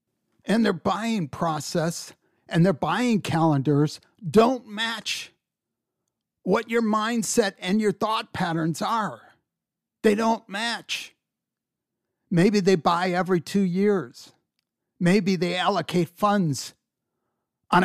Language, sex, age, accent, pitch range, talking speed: English, male, 50-69, American, 155-205 Hz, 110 wpm